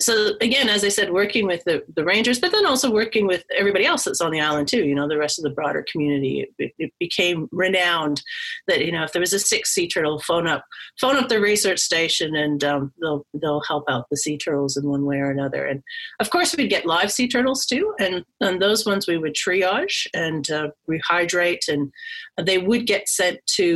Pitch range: 155-225 Hz